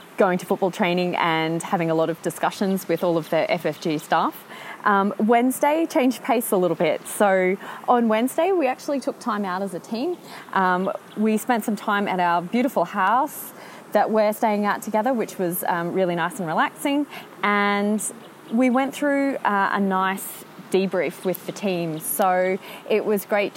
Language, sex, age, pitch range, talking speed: English, female, 20-39, 180-225 Hz, 180 wpm